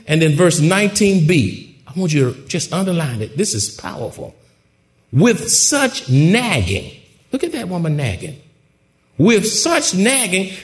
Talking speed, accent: 140 wpm, American